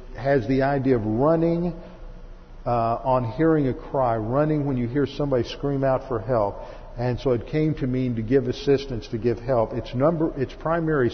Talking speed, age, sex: 190 wpm, 50-69, male